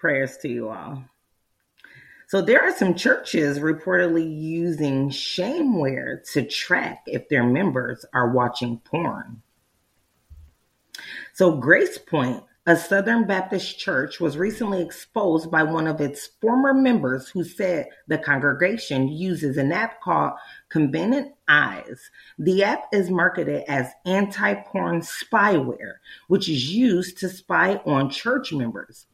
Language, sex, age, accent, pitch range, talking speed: English, female, 40-59, American, 135-190 Hz, 125 wpm